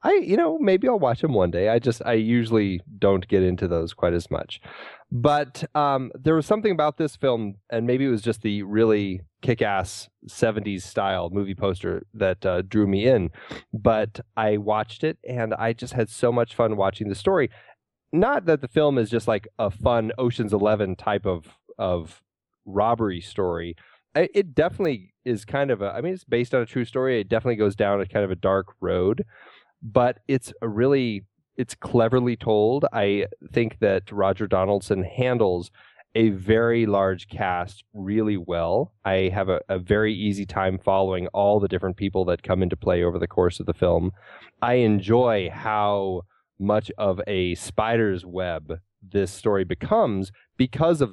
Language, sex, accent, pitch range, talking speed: English, male, American, 95-120 Hz, 180 wpm